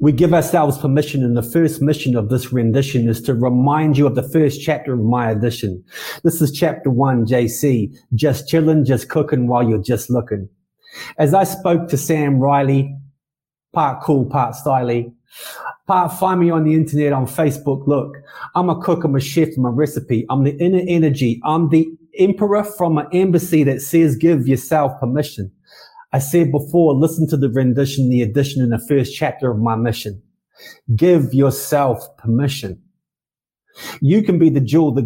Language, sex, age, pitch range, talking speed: English, male, 30-49, 125-160 Hz, 175 wpm